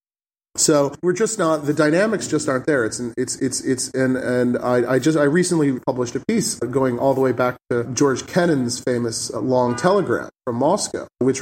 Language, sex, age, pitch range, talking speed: English, male, 30-49, 120-140 Hz, 195 wpm